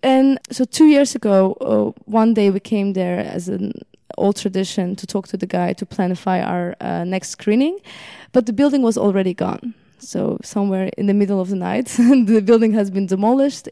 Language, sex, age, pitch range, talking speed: English, female, 20-39, 200-245 Hz, 195 wpm